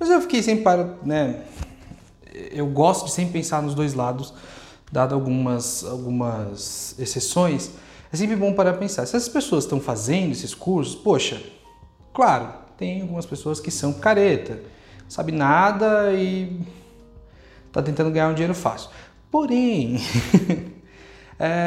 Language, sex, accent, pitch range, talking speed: Portuguese, male, Brazilian, 140-220 Hz, 135 wpm